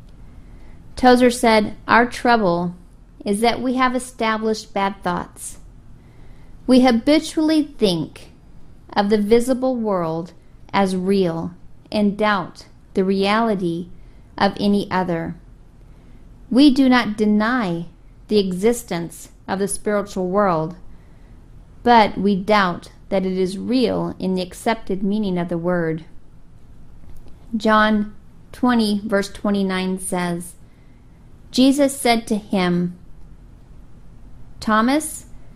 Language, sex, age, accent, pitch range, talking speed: English, female, 40-59, American, 185-240 Hz, 105 wpm